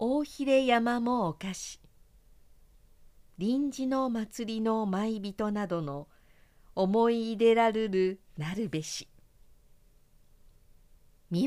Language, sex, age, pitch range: Japanese, female, 50-69, 155-235 Hz